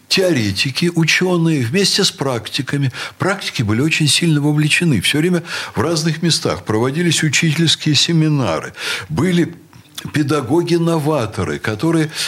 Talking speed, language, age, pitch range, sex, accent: 105 wpm, Russian, 60-79, 130-175 Hz, male, native